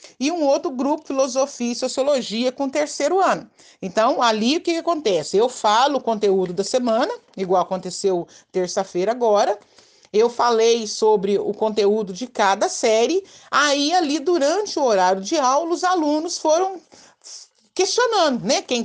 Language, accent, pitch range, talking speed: Portuguese, Brazilian, 220-320 Hz, 150 wpm